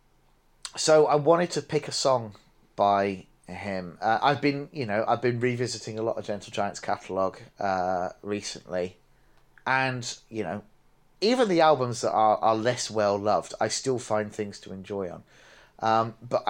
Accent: British